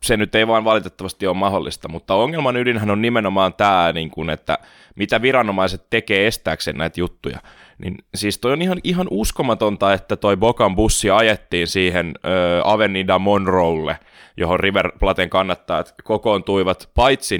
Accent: native